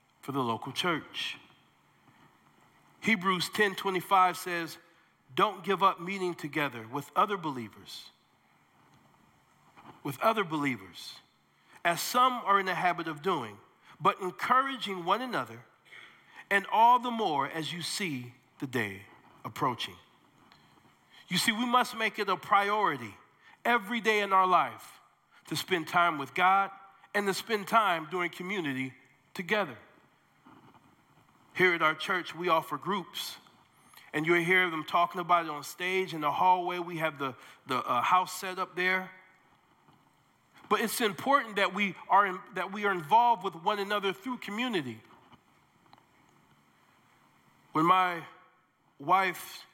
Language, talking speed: English, 135 wpm